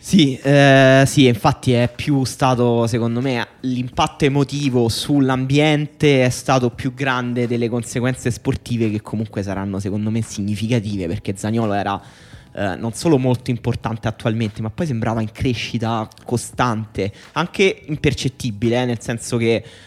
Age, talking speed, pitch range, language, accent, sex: 20-39, 140 wpm, 110-135 Hz, Italian, native, male